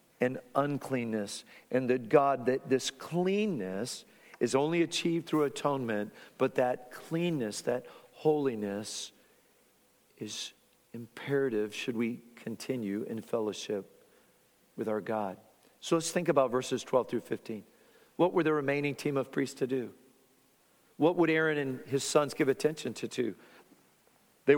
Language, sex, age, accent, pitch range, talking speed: English, male, 50-69, American, 135-180 Hz, 135 wpm